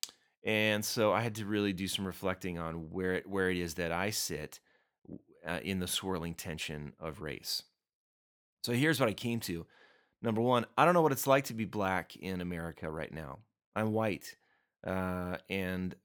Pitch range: 85-105 Hz